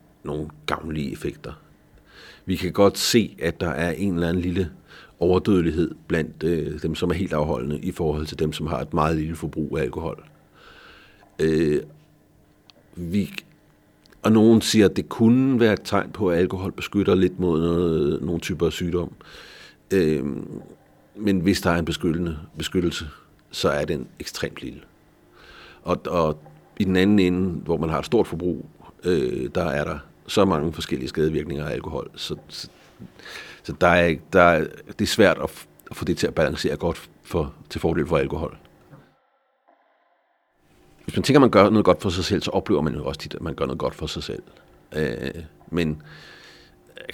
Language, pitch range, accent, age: Danish, 75-95 Hz, native, 60-79